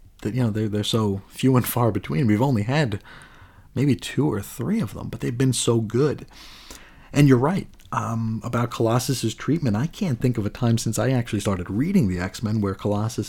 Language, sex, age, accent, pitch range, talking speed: English, male, 40-59, American, 105-130 Hz, 210 wpm